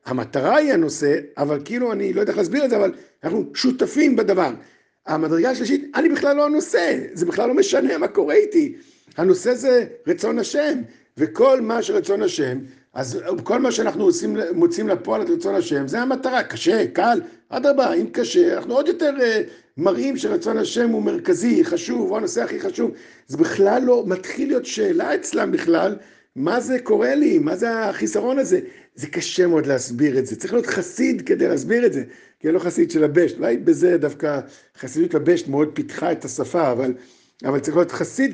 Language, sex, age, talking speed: Hebrew, male, 50-69, 180 wpm